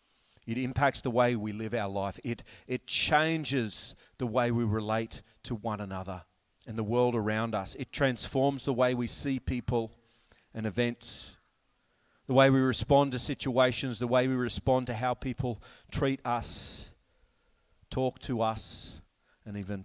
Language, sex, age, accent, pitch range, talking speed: English, male, 40-59, Australian, 95-120 Hz, 155 wpm